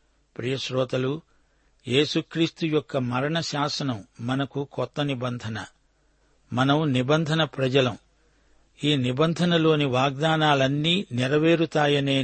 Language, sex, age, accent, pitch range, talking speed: Telugu, male, 60-79, native, 125-150 Hz, 75 wpm